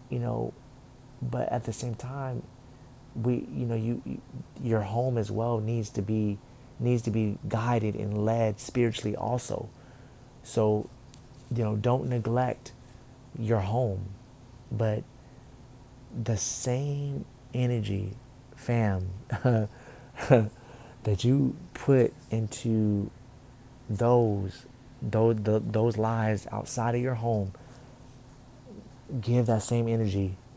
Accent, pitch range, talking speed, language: American, 110-125 Hz, 110 wpm, English